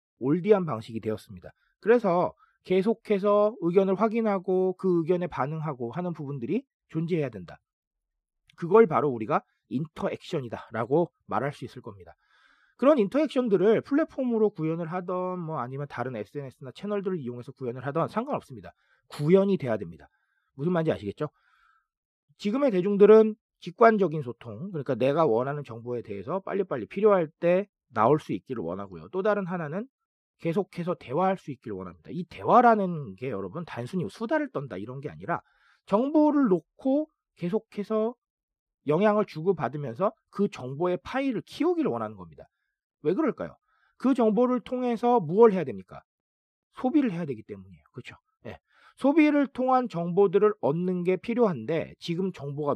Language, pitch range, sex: Korean, 145-220 Hz, male